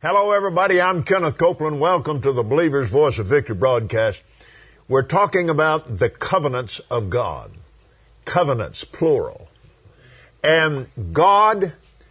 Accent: American